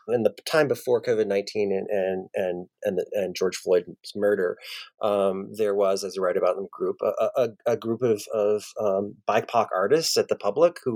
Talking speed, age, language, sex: 205 wpm, 30-49, English, male